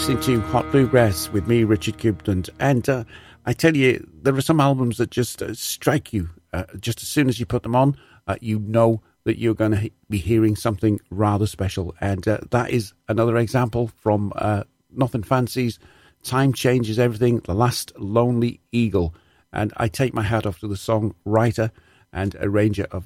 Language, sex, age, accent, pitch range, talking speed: English, male, 40-59, British, 100-125 Hz, 185 wpm